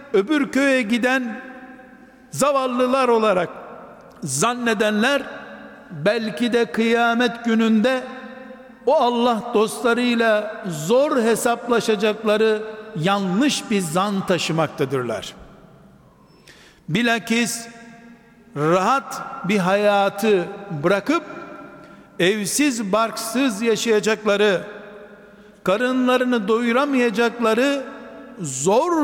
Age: 60-79